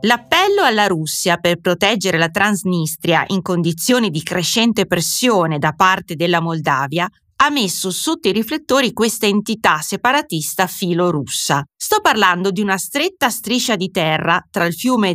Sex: female